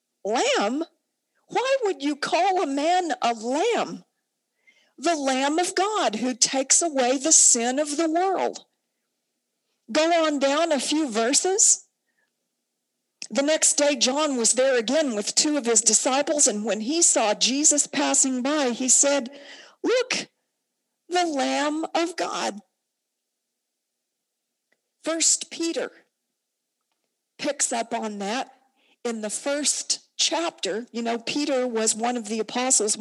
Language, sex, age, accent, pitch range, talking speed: English, female, 50-69, American, 235-305 Hz, 130 wpm